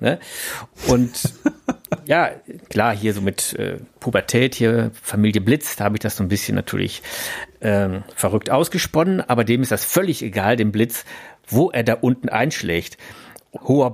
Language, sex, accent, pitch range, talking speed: German, male, German, 110-135 Hz, 155 wpm